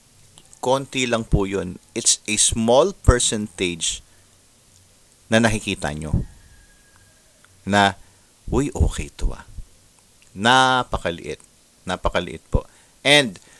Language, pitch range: English, 95-120 Hz